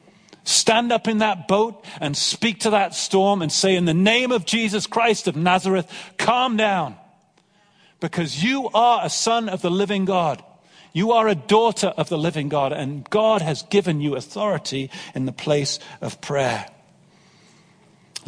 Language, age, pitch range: English, 50-69, 165-200 Hz